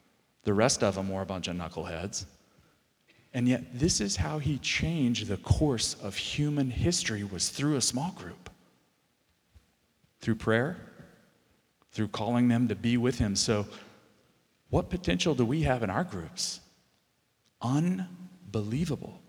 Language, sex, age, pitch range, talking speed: English, male, 40-59, 100-125 Hz, 140 wpm